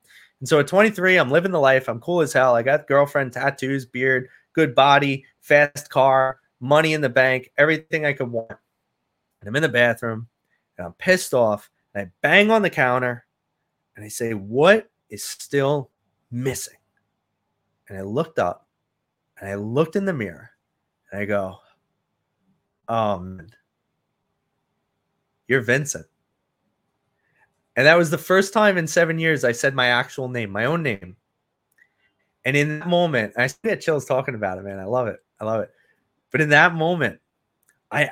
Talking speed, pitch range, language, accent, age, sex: 170 wpm, 120-175 Hz, English, American, 30-49, male